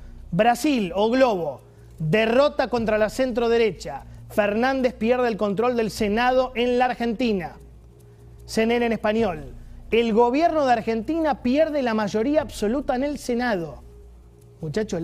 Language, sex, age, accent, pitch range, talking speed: Spanish, male, 30-49, Argentinian, 175-245 Hz, 125 wpm